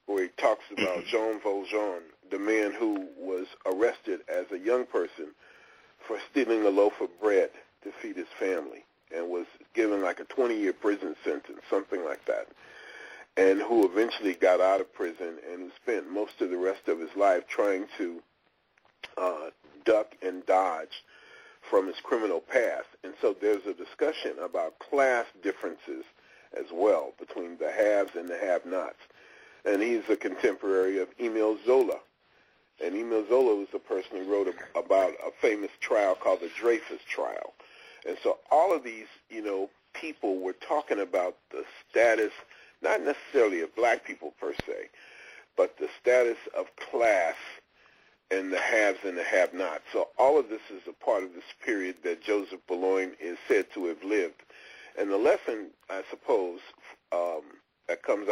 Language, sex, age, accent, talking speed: English, male, 40-59, American, 165 wpm